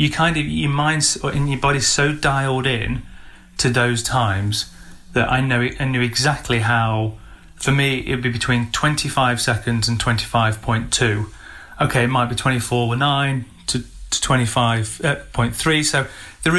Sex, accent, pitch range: male, British, 110-135 Hz